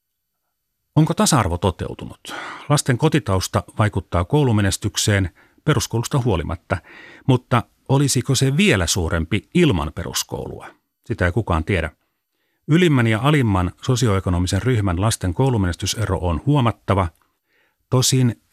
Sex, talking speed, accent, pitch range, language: male, 95 wpm, native, 95-130 Hz, Finnish